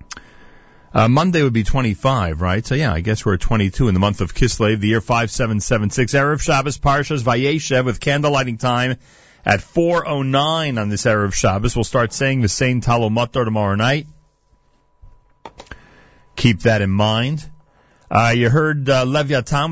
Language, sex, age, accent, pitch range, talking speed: English, male, 40-59, American, 105-140 Hz, 160 wpm